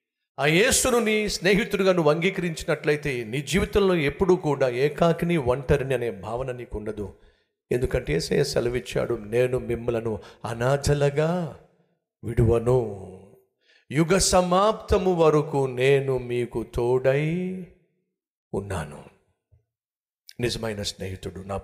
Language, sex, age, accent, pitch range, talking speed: Telugu, male, 50-69, native, 100-160 Hz, 90 wpm